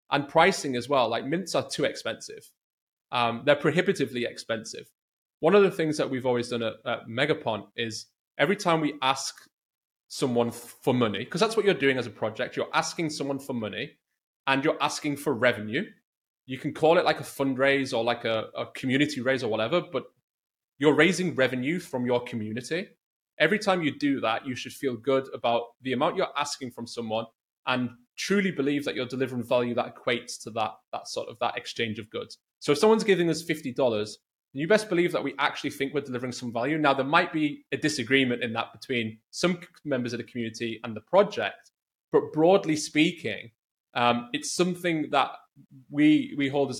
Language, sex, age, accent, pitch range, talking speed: English, male, 20-39, British, 120-155 Hz, 195 wpm